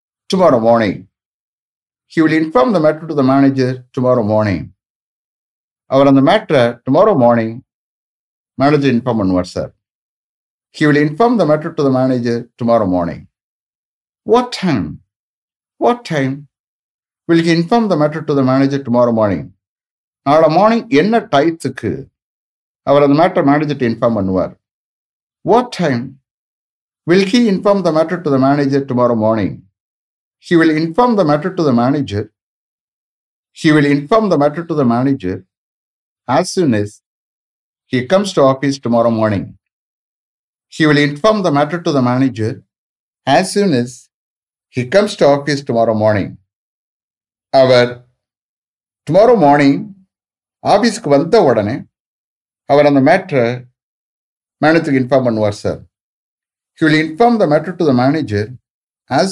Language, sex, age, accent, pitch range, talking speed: English, male, 60-79, Indian, 115-155 Hz, 120 wpm